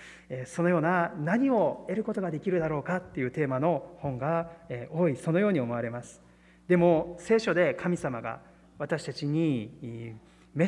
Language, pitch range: Japanese, 125-175 Hz